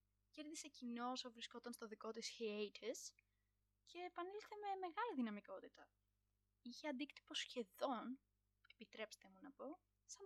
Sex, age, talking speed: female, 20-39, 125 wpm